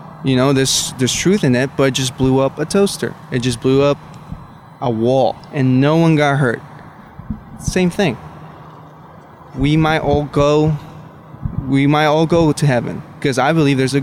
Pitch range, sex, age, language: 135-160 Hz, male, 20-39, English